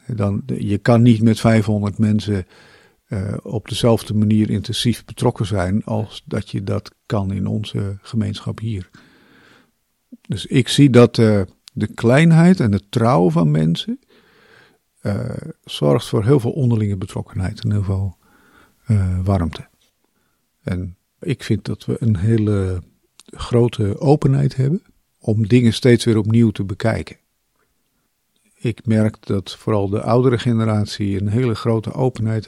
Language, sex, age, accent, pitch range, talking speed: Dutch, male, 50-69, Dutch, 100-120 Hz, 140 wpm